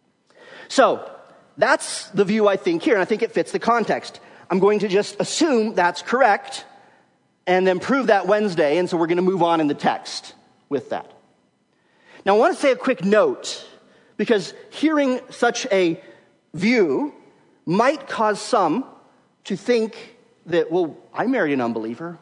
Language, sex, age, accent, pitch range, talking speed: English, male, 40-59, American, 170-230 Hz, 165 wpm